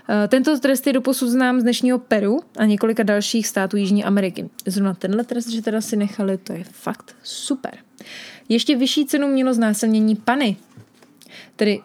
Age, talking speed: 20-39, 160 wpm